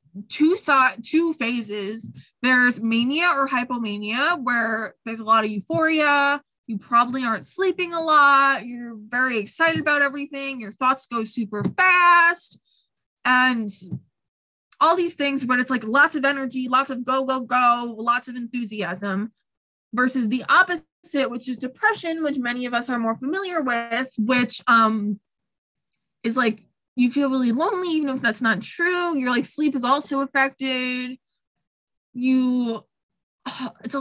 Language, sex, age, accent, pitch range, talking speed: English, female, 20-39, American, 235-290 Hz, 150 wpm